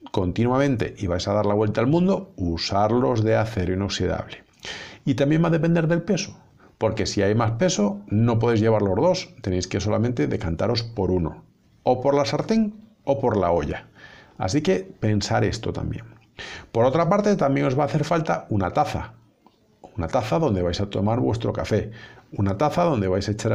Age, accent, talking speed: 50-69, Spanish, 190 wpm